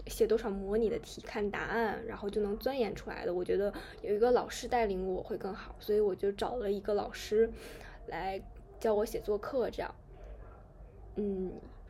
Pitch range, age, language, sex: 215-270 Hz, 10-29, Chinese, female